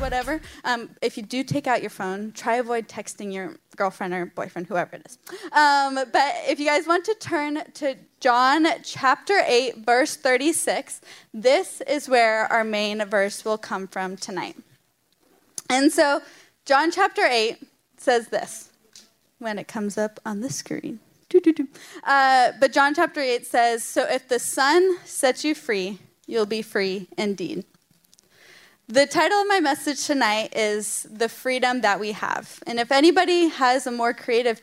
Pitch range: 215-295 Hz